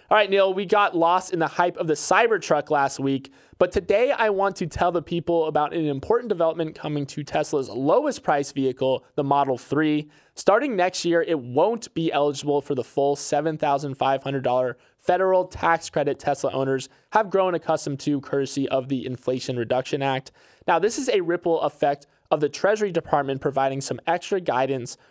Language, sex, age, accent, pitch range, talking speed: English, male, 20-39, American, 140-175 Hz, 175 wpm